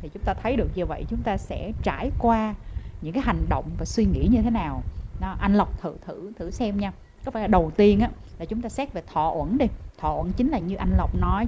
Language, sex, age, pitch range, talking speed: Vietnamese, female, 20-39, 195-270 Hz, 270 wpm